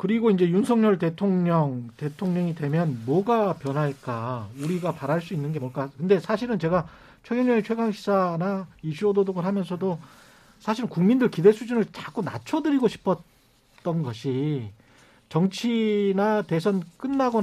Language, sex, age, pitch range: Korean, male, 40-59, 150-215 Hz